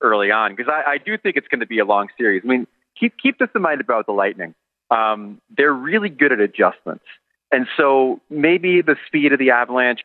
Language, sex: English, male